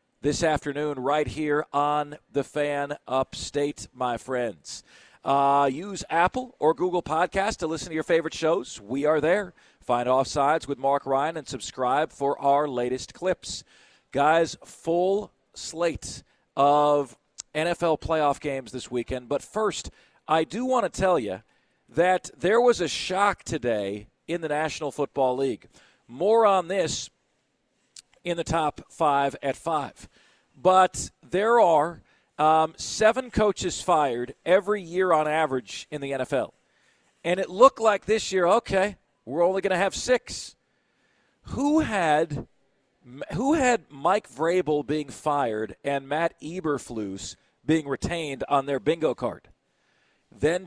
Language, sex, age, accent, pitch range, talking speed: English, male, 40-59, American, 140-185 Hz, 140 wpm